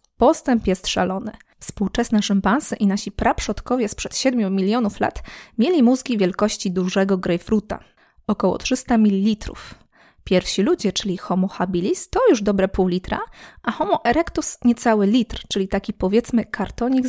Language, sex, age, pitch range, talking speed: Polish, female, 20-39, 190-245 Hz, 135 wpm